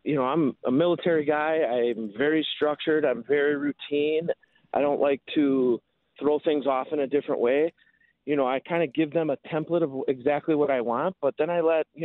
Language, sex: English, male